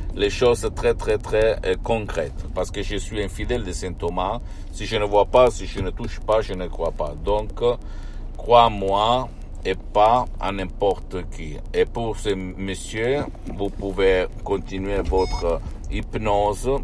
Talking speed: 160 wpm